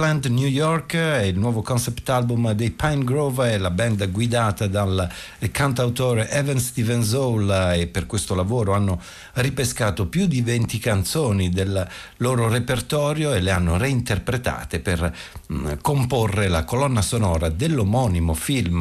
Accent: native